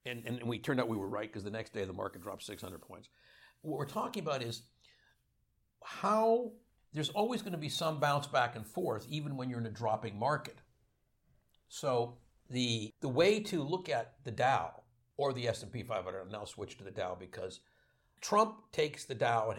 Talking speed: 200 wpm